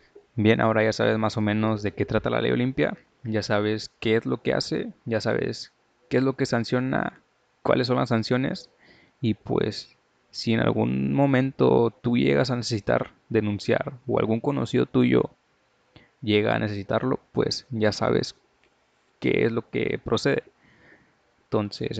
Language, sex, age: Spanish, male, 20-39